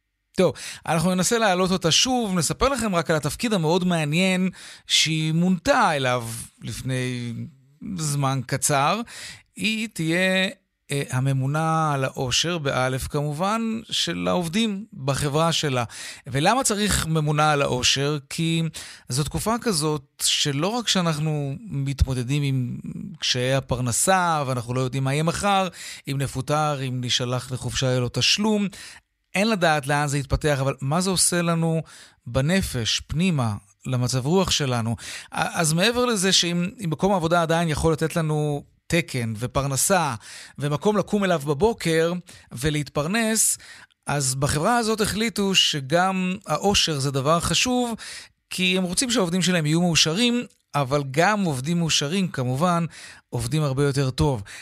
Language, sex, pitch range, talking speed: Hebrew, male, 135-185 Hz, 130 wpm